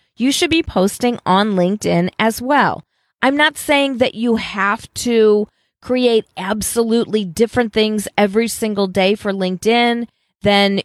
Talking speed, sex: 140 wpm, female